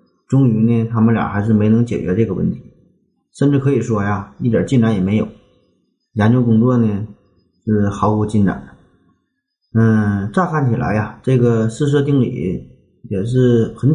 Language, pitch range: Chinese, 105-135 Hz